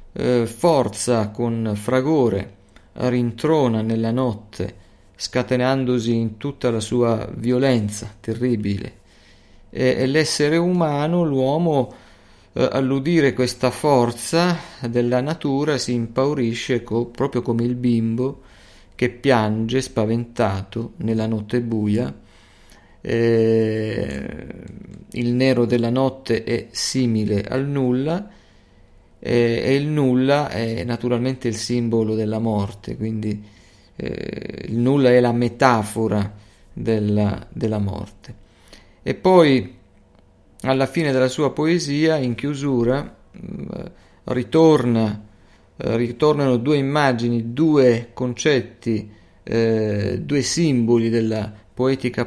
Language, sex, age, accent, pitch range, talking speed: Italian, male, 40-59, native, 105-130 Hz, 95 wpm